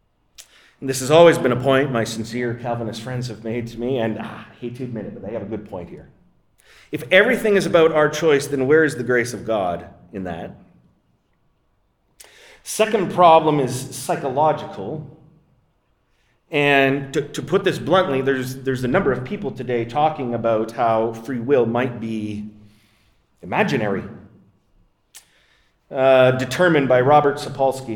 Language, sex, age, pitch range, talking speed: English, male, 30-49, 120-160 Hz, 155 wpm